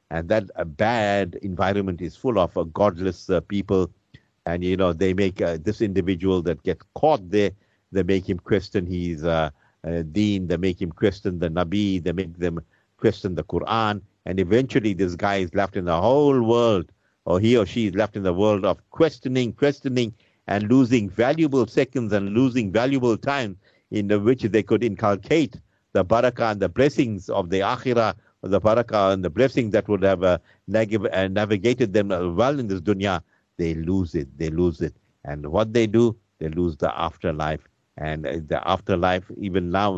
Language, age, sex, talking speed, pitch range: English, 50-69, male, 185 wpm, 85-105 Hz